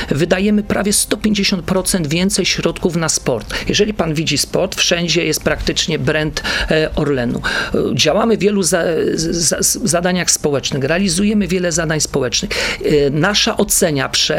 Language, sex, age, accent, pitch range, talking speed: Polish, male, 40-59, native, 155-200 Hz, 125 wpm